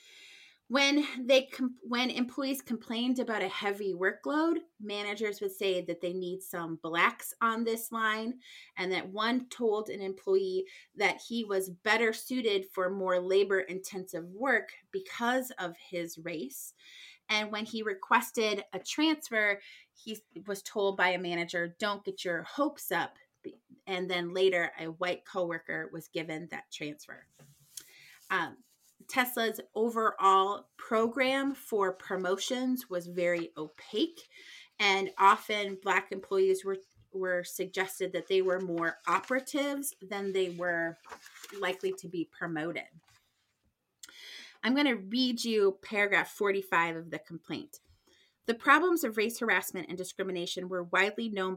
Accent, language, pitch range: American, English, 180-235 Hz